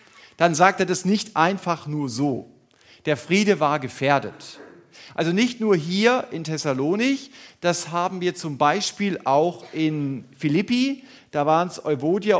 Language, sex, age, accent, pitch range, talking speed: German, male, 40-59, German, 130-185 Hz, 145 wpm